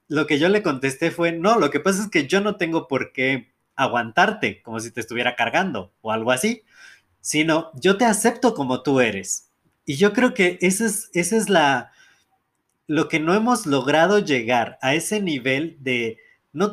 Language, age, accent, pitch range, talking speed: Spanish, 30-49, Mexican, 130-180 Hz, 190 wpm